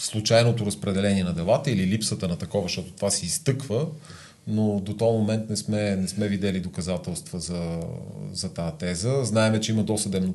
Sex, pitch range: male, 95-120 Hz